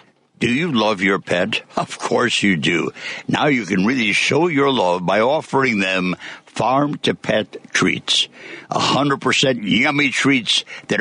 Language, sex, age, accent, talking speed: English, male, 60-79, American, 160 wpm